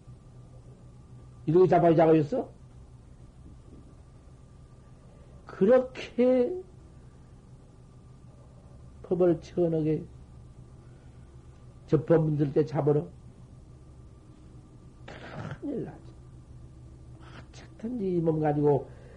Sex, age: male, 60-79